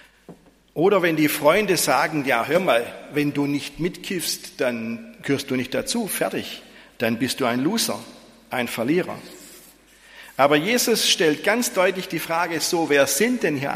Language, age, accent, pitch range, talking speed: German, 50-69, German, 145-215 Hz, 160 wpm